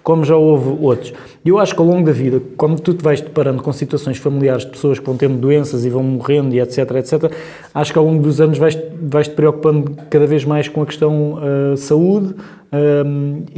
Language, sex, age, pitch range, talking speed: Portuguese, male, 20-39, 135-165 Hz, 220 wpm